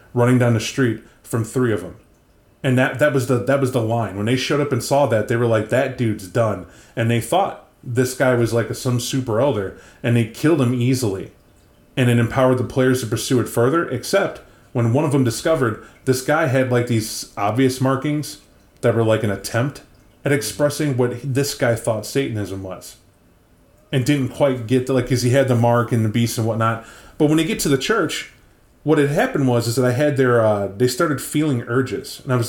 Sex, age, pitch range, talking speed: male, 30-49, 110-130 Hz, 220 wpm